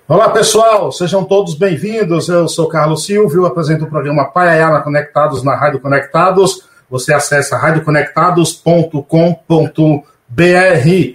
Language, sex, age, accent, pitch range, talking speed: Portuguese, male, 50-69, Brazilian, 150-185 Hz, 115 wpm